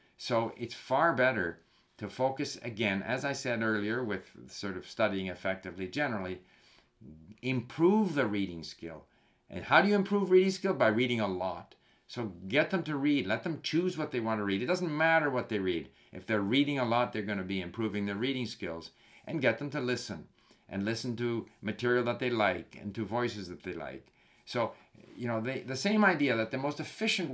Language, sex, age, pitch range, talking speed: English, male, 50-69, 100-140 Hz, 205 wpm